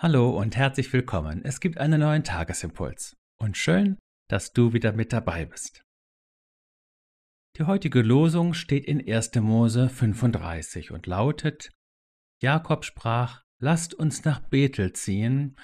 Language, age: German, 50-69